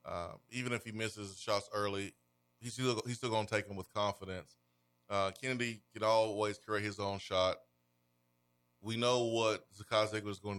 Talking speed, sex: 175 wpm, male